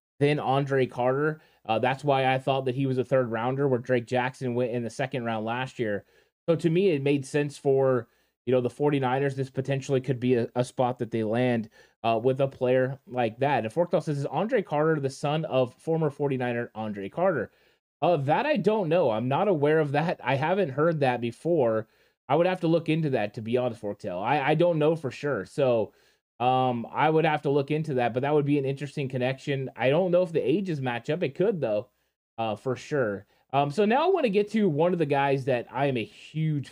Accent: American